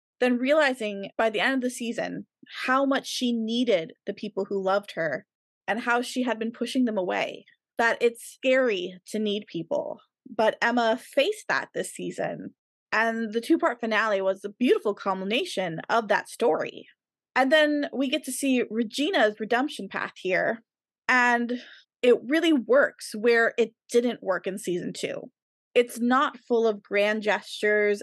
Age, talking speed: 20-39, 160 wpm